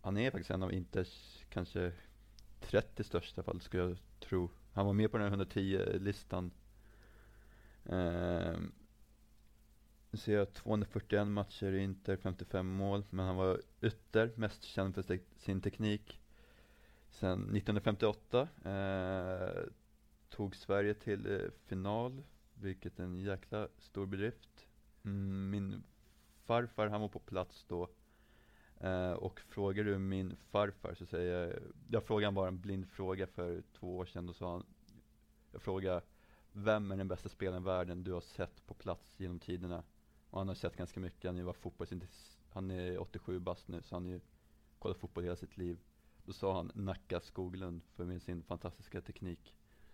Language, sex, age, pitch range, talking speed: Swedish, male, 30-49, 90-105 Hz, 160 wpm